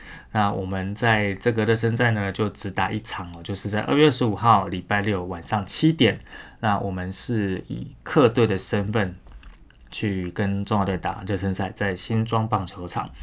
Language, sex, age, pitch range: Chinese, male, 20-39, 95-115 Hz